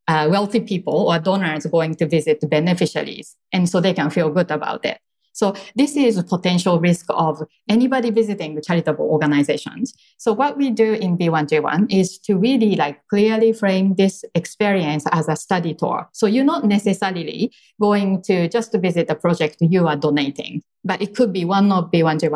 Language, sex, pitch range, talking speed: English, female, 165-220 Hz, 180 wpm